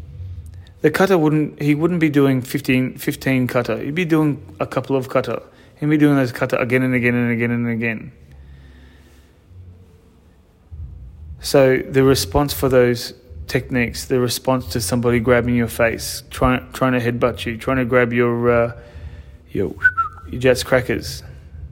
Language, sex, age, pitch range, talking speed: English, male, 20-39, 90-130 Hz, 150 wpm